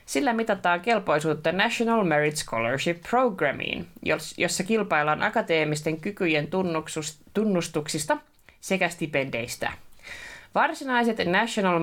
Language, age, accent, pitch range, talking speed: Finnish, 20-39, native, 150-200 Hz, 80 wpm